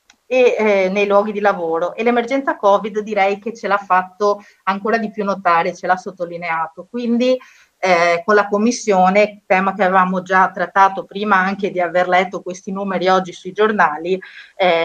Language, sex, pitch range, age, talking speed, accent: Italian, female, 185-215 Hz, 30-49, 170 wpm, native